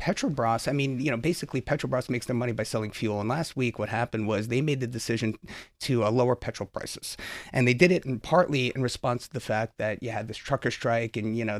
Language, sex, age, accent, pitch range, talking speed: English, male, 30-49, American, 115-150 Hz, 255 wpm